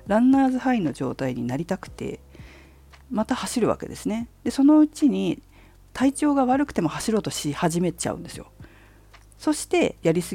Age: 50-69